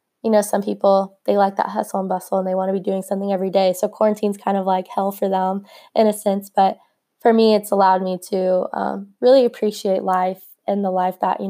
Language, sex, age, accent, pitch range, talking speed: English, female, 20-39, American, 195-230 Hz, 240 wpm